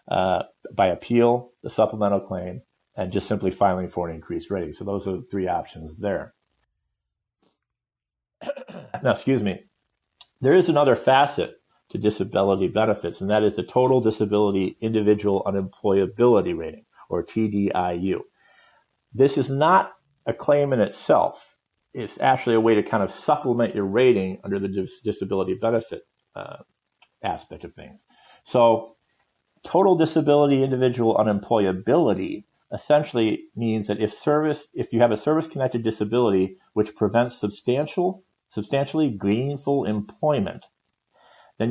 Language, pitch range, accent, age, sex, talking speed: English, 100-125 Hz, American, 50-69, male, 130 wpm